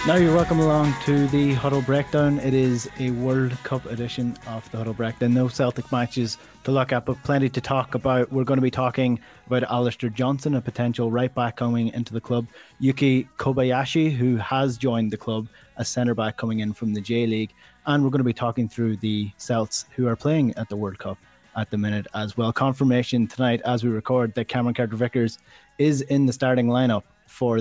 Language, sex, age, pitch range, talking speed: English, male, 20-39, 115-135 Hz, 205 wpm